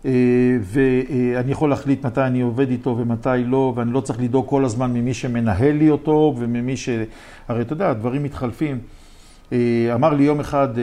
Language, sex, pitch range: Hebrew, male, 115-145 Hz